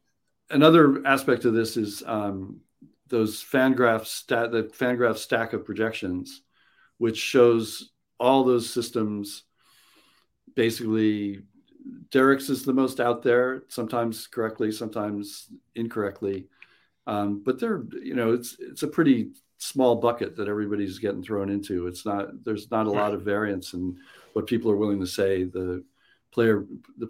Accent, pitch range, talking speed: American, 105-135 Hz, 140 wpm